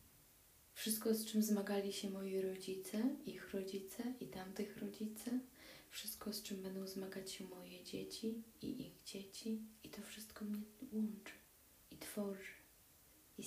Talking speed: 140 wpm